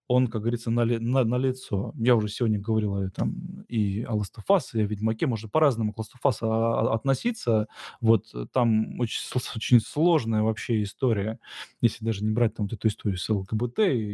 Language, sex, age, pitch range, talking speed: Russian, male, 20-39, 110-135 Hz, 175 wpm